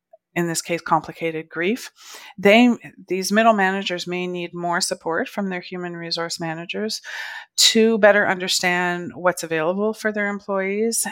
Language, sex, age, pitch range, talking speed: English, female, 40-59, 165-195 Hz, 140 wpm